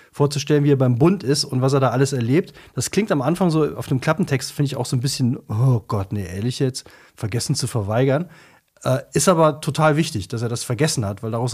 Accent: German